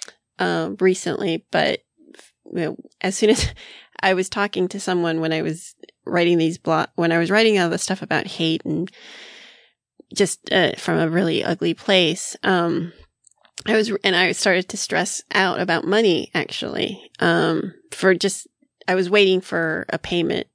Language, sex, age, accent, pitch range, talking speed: English, female, 20-39, American, 175-210 Hz, 170 wpm